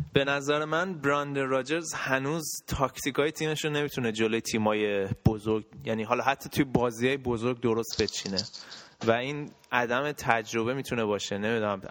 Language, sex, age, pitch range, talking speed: Persian, male, 20-39, 115-135 Hz, 140 wpm